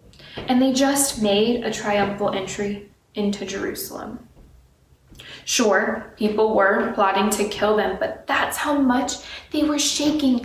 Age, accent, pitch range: 20-39, American, 200-255 Hz